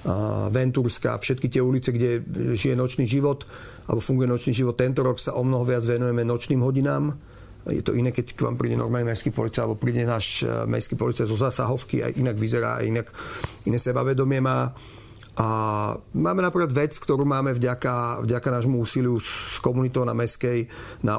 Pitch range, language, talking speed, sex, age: 115-130 Hz, Slovak, 175 wpm, male, 40-59